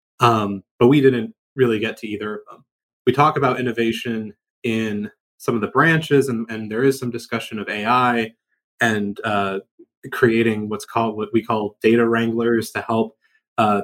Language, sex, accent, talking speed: English, male, American, 175 wpm